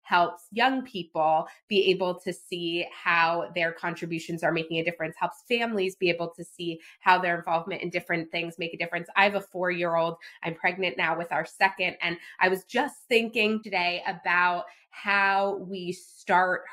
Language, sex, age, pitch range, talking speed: English, female, 20-39, 170-195 Hz, 175 wpm